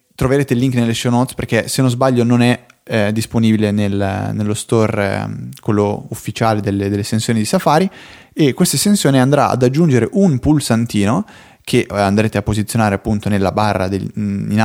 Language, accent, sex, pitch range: Italian, native, male, 105-140 Hz